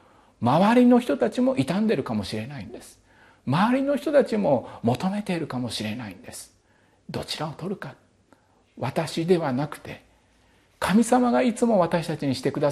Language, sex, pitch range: Japanese, male, 105-145 Hz